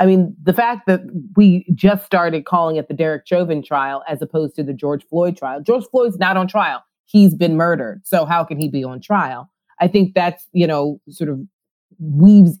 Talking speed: 210 wpm